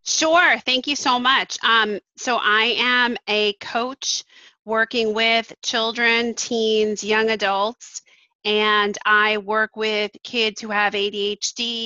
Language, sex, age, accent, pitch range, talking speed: English, female, 30-49, American, 200-230 Hz, 125 wpm